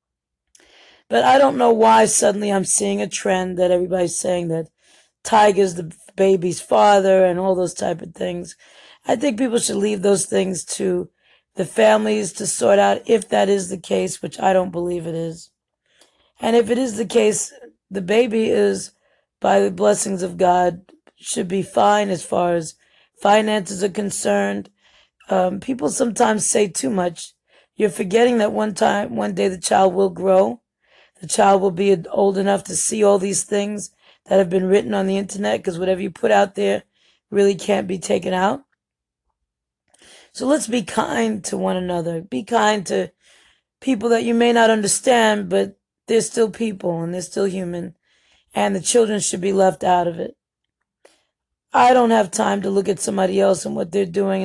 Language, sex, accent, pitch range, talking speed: English, female, American, 180-215 Hz, 180 wpm